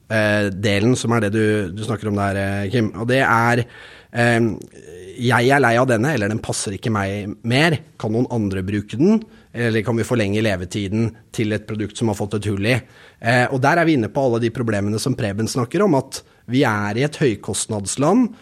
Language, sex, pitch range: English, male, 110-135 Hz